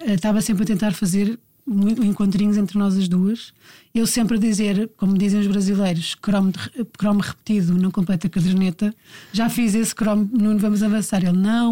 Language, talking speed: Portuguese, 170 wpm